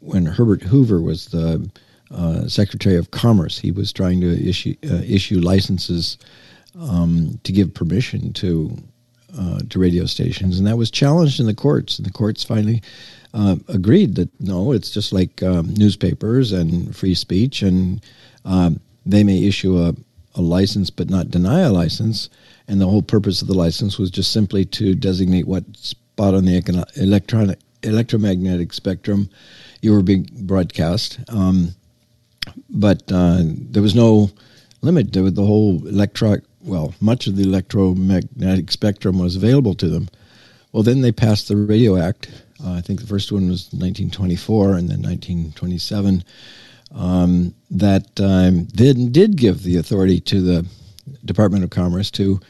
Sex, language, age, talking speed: male, English, 50-69, 160 wpm